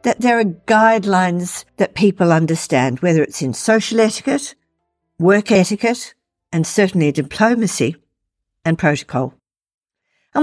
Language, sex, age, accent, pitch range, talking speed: English, female, 50-69, Australian, 165-240 Hz, 115 wpm